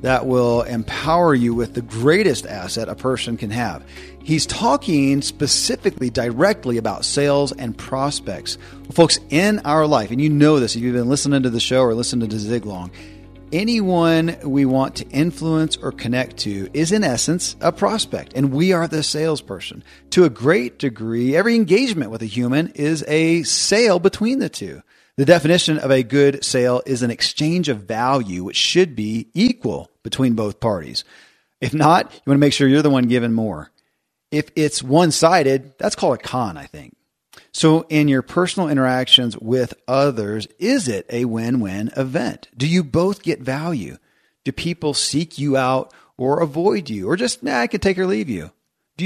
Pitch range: 120-160 Hz